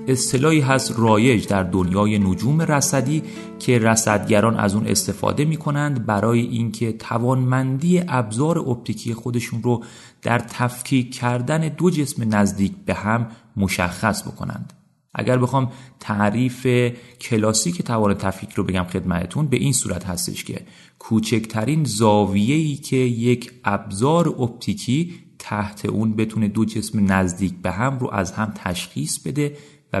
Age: 30-49